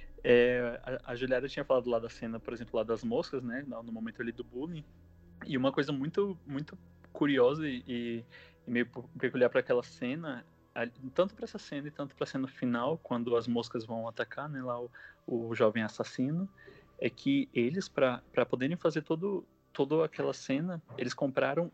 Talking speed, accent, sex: 180 wpm, Brazilian, male